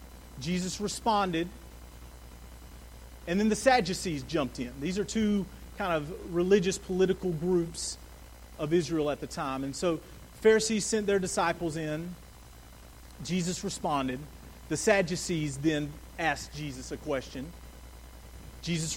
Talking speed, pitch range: 120 wpm, 145-190 Hz